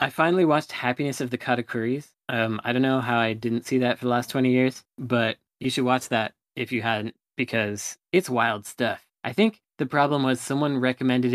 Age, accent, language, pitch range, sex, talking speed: 20-39, American, English, 115-135 Hz, male, 210 wpm